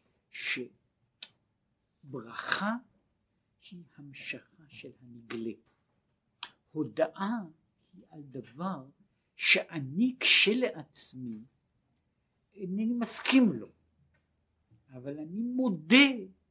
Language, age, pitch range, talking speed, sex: Hebrew, 60-79, 125-185 Hz, 60 wpm, male